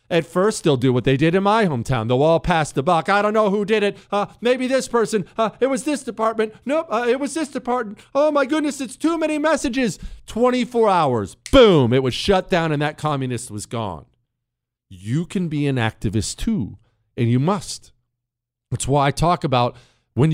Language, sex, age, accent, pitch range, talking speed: English, male, 40-59, American, 120-165 Hz, 205 wpm